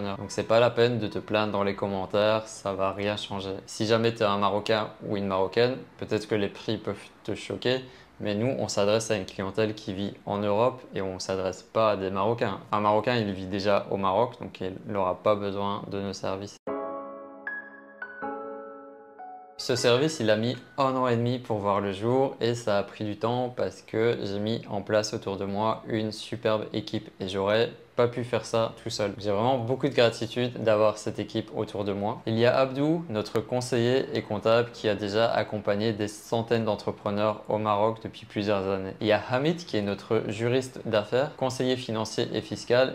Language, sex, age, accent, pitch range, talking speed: French, male, 20-39, French, 105-120 Hz, 205 wpm